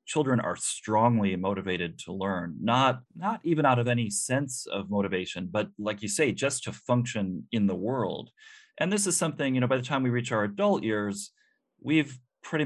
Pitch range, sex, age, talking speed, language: 100-130 Hz, male, 30-49, 195 wpm, English